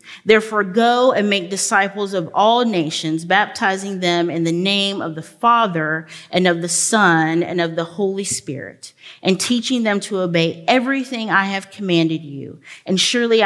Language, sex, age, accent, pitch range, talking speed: English, female, 30-49, American, 165-210 Hz, 165 wpm